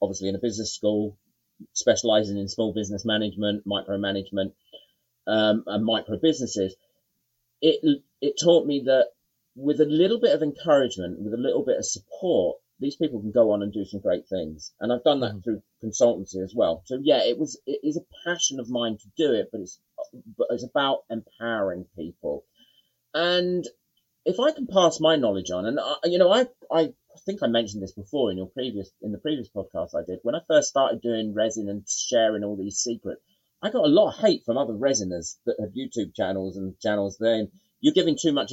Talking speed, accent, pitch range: 200 wpm, British, 105-165 Hz